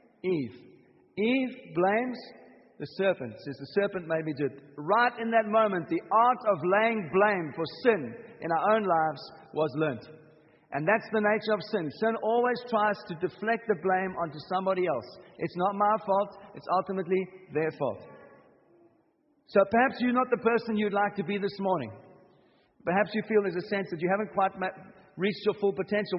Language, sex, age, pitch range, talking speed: English, male, 50-69, 165-215 Hz, 180 wpm